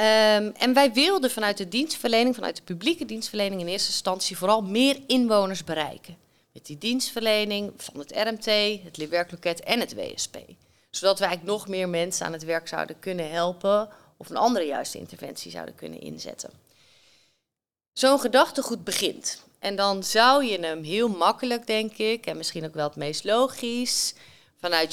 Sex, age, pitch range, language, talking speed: female, 30-49, 185-230 Hz, Dutch, 160 wpm